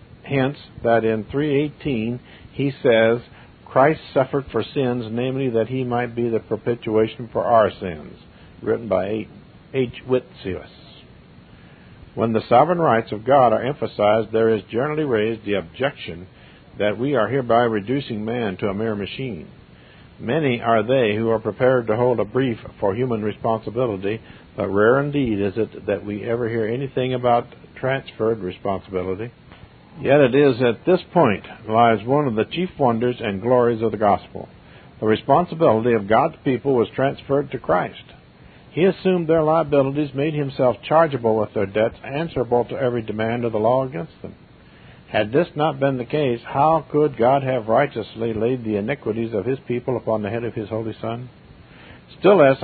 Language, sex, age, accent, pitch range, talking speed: English, male, 50-69, American, 110-140 Hz, 165 wpm